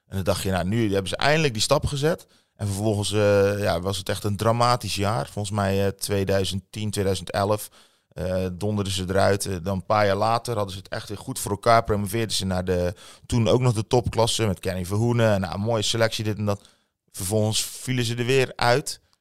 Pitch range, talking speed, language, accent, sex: 95-110 Hz, 220 wpm, Dutch, Dutch, male